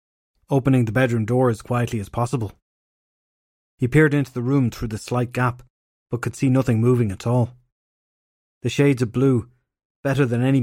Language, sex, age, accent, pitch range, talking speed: English, male, 30-49, Irish, 110-130 Hz, 175 wpm